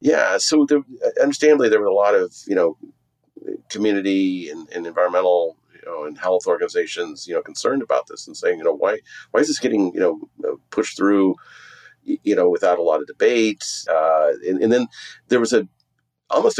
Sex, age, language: male, 40-59, English